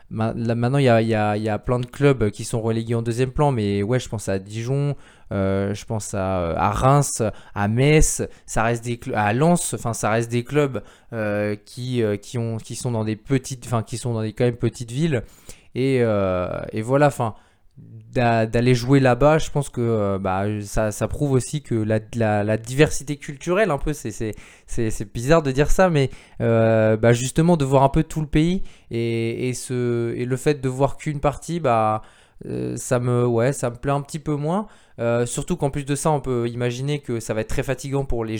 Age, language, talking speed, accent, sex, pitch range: 20-39, French, 220 wpm, French, male, 115-140 Hz